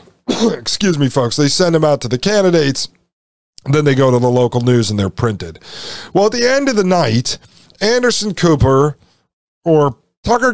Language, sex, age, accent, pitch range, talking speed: English, male, 50-69, American, 125-185 Hz, 175 wpm